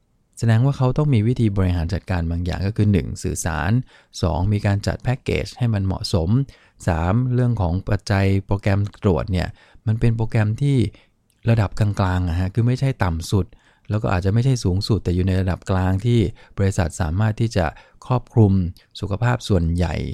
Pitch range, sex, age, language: 95-115 Hz, male, 20-39, English